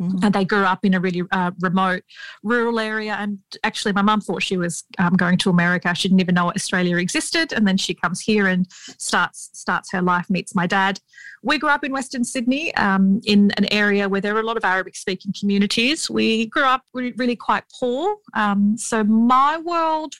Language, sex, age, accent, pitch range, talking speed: English, female, 30-49, Australian, 190-230 Hz, 205 wpm